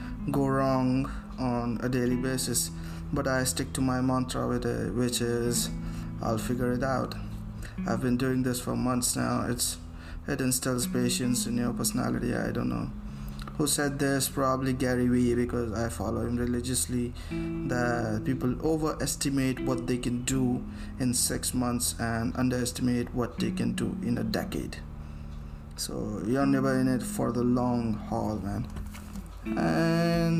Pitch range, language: 95-135 Hz, English